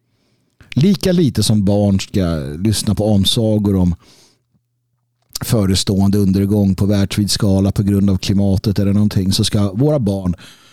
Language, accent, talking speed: Swedish, native, 135 wpm